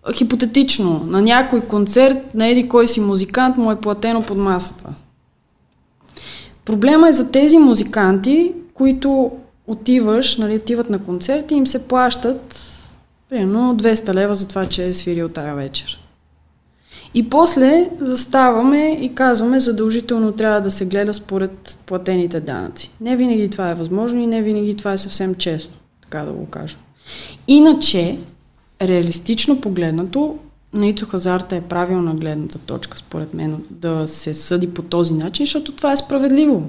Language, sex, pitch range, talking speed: Bulgarian, female, 180-245 Hz, 145 wpm